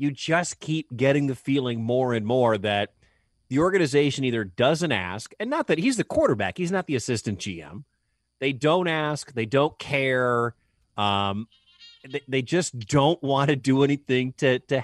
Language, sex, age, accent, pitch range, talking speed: English, male, 30-49, American, 125-175 Hz, 170 wpm